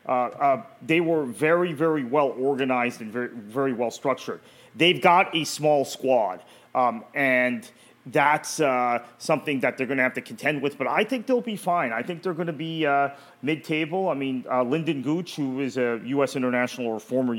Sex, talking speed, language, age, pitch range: male, 195 wpm, English, 30-49, 115-140 Hz